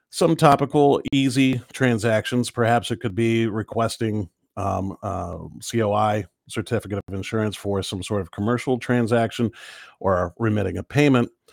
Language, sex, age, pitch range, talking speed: English, male, 50-69, 95-120 Hz, 130 wpm